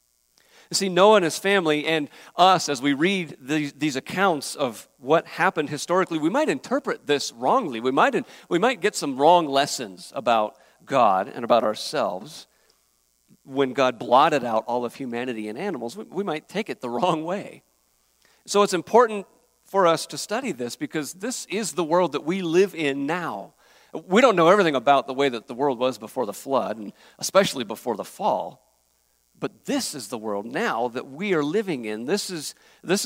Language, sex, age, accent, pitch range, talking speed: English, male, 50-69, American, 125-180 Hz, 190 wpm